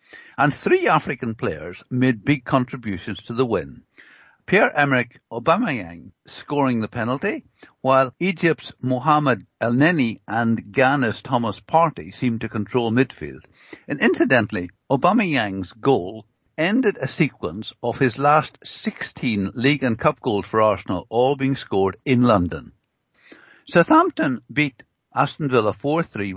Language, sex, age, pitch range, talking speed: English, male, 60-79, 115-150 Hz, 125 wpm